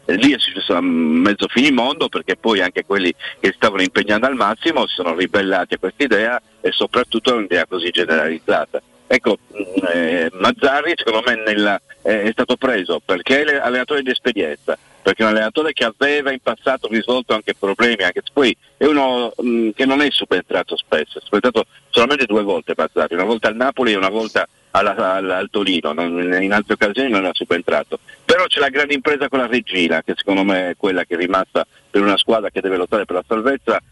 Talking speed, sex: 200 wpm, male